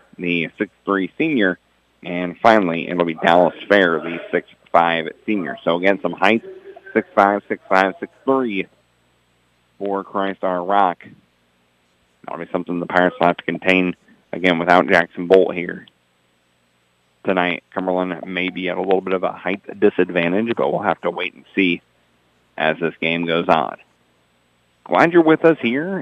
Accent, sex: American, male